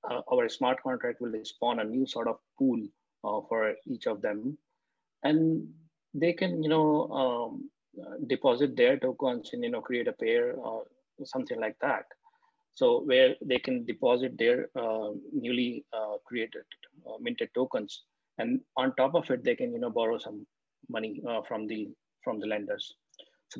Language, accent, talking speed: English, Indian, 175 wpm